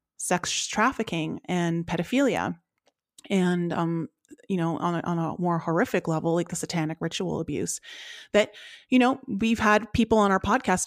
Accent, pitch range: American, 165-205 Hz